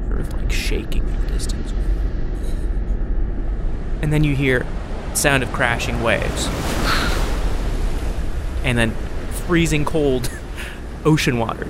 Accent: American